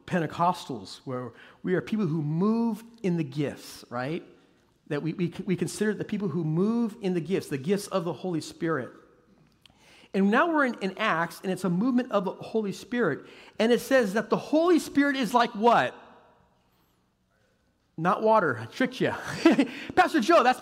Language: English